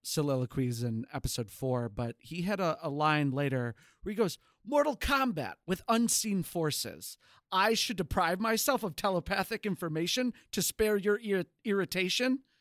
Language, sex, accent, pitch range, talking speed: English, male, American, 130-195 Hz, 150 wpm